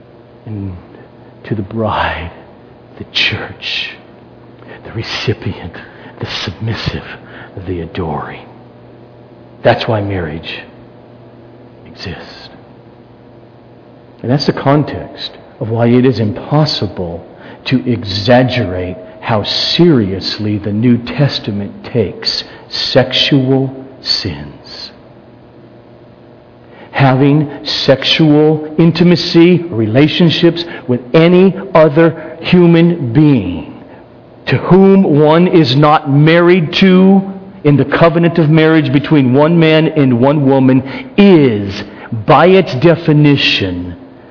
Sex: male